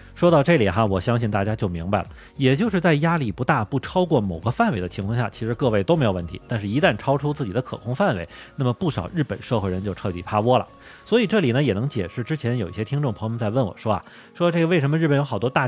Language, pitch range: Chinese, 105-145 Hz